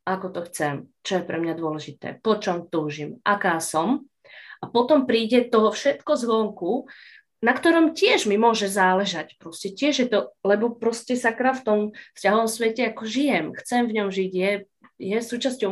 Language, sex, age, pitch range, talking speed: Slovak, female, 30-49, 185-235 Hz, 170 wpm